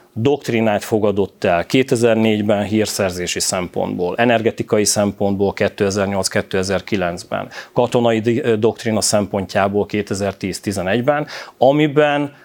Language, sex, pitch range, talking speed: Hungarian, male, 100-120 Hz, 70 wpm